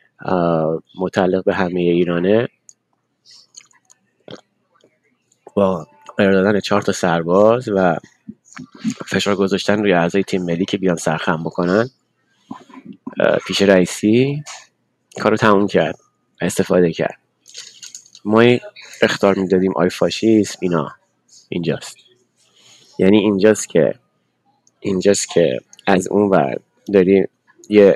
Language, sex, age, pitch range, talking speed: Persian, male, 20-39, 95-110 Hz, 90 wpm